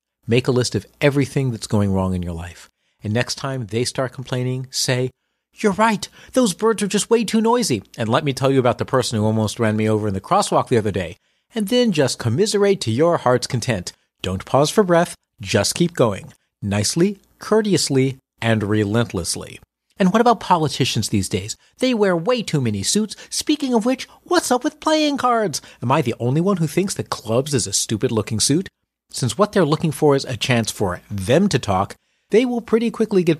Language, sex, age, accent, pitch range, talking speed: English, male, 40-59, American, 110-180 Hz, 205 wpm